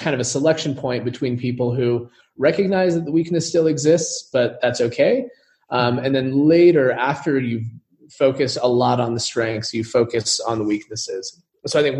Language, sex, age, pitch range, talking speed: English, male, 30-49, 115-140 Hz, 185 wpm